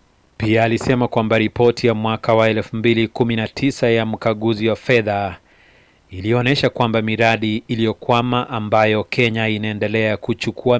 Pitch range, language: 105-120 Hz, Swahili